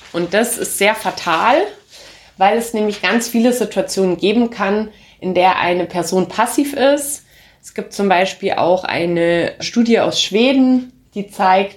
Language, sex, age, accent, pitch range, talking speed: German, female, 30-49, German, 175-225 Hz, 155 wpm